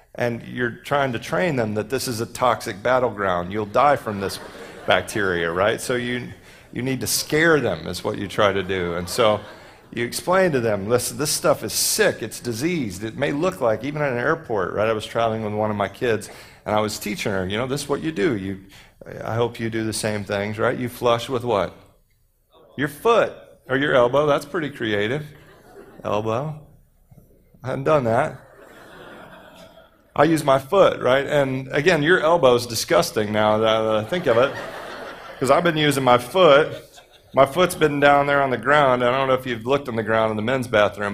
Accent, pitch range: American, 110-140 Hz